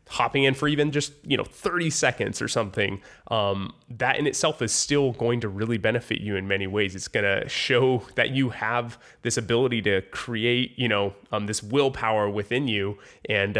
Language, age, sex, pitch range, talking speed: English, 20-39, male, 100-125 Hz, 190 wpm